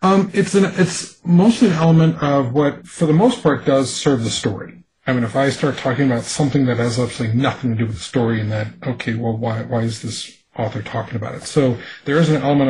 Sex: male